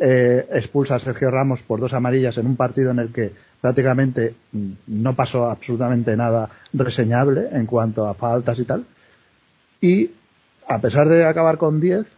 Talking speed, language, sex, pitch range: 165 wpm, Spanish, male, 115-145 Hz